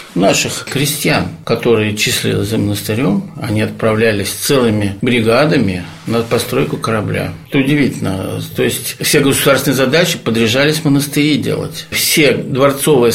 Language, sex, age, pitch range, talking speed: Russian, male, 50-69, 110-140 Hz, 115 wpm